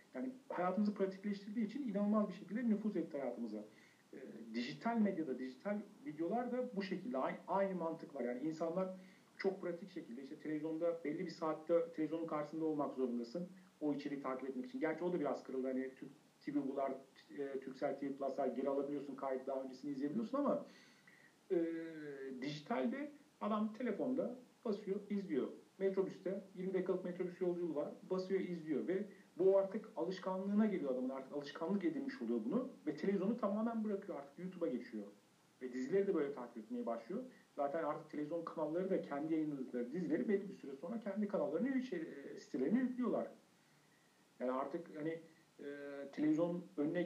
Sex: male